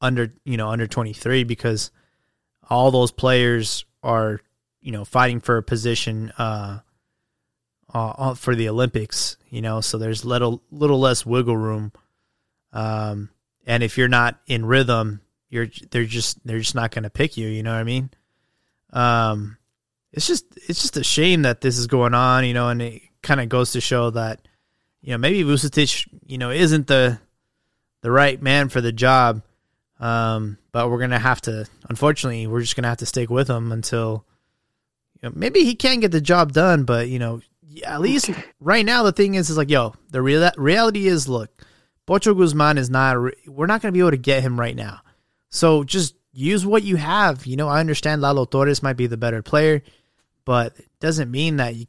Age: 20-39